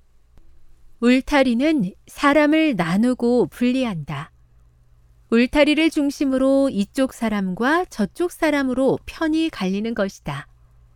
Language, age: Korean, 40-59